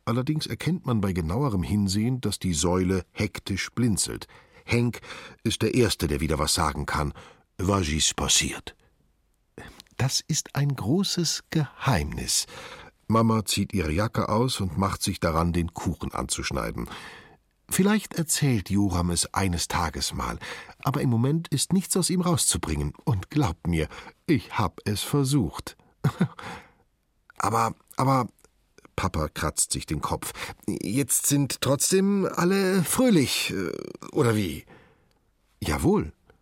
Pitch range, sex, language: 90-140 Hz, male, German